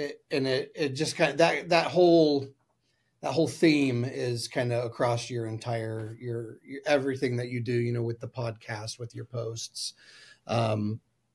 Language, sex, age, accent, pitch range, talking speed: English, male, 30-49, American, 120-150 Hz, 180 wpm